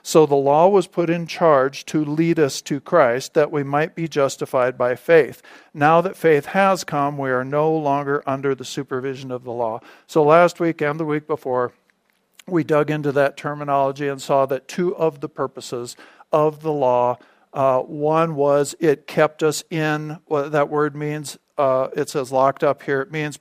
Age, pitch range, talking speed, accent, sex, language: 50-69, 135-155 Hz, 195 wpm, American, male, English